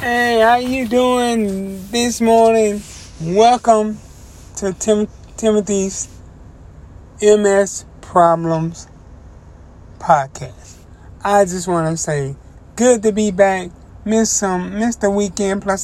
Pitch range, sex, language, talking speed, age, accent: 135-190 Hz, male, English, 105 wpm, 30-49, American